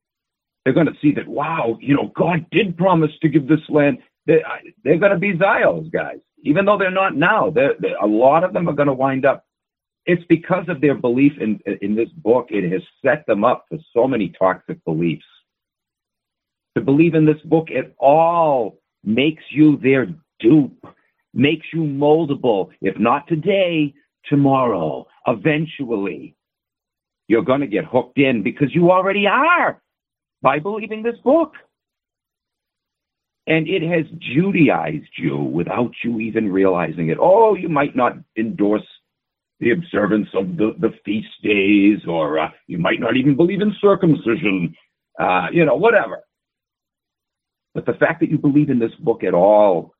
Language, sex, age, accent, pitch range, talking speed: English, male, 50-69, American, 120-170 Hz, 160 wpm